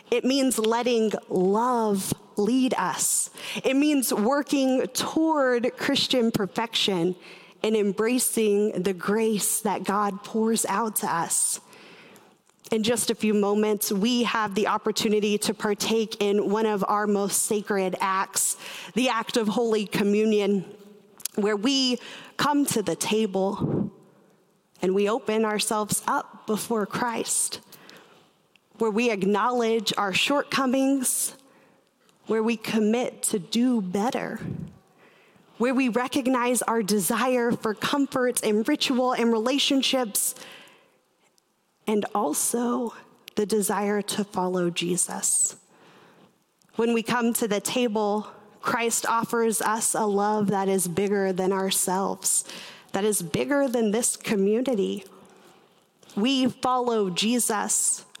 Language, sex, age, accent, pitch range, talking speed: English, female, 30-49, American, 205-240 Hz, 115 wpm